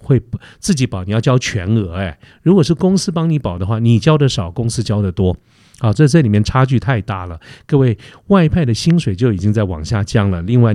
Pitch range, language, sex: 100-130 Hz, Chinese, male